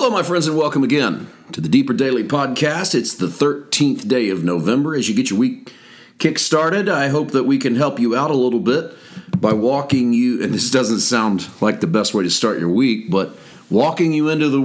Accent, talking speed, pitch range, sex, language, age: American, 220 wpm, 110-145 Hz, male, English, 40-59